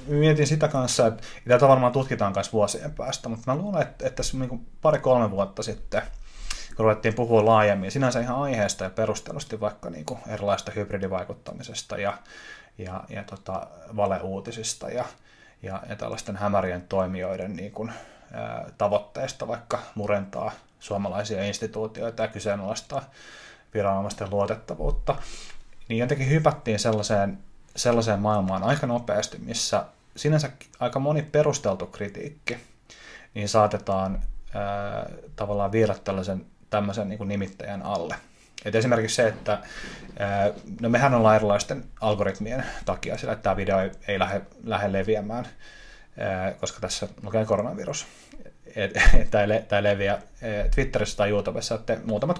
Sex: male